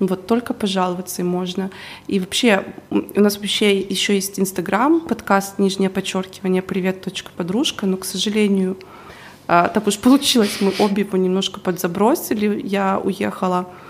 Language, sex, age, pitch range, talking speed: Russian, female, 20-39, 195-245 Hz, 130 wpm